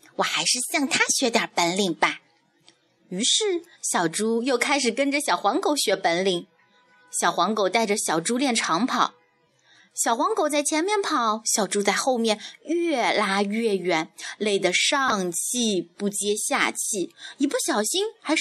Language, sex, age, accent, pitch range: Chinese, female, 30-49, native, 200-315 Hz